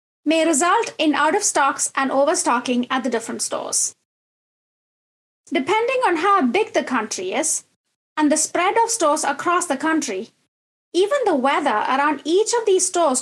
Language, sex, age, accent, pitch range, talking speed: English, female, 20-39, Indian, 275-370 Hz, 150 wpm